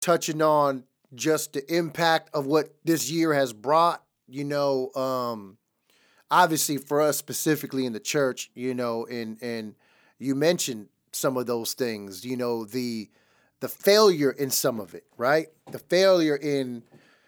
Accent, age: American, 30-49